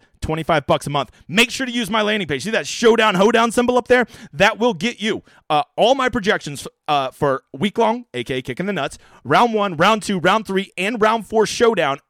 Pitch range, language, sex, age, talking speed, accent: 145-215 Hz, English, male, 30-49, 225 wpm, American